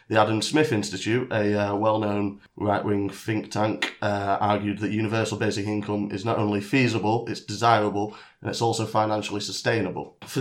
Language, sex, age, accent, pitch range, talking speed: English, male, 30-49, British, 100-115 Hz, 160 wpm